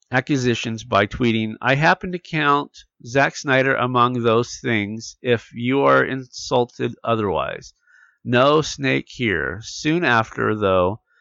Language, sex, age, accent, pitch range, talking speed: English, male, 50-69, American, 110-145 Hz, 125 wpm